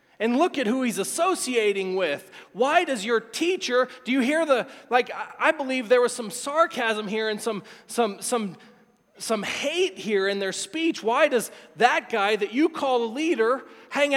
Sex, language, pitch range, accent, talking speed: male, English, 220-275 Hz, American, 180 wpm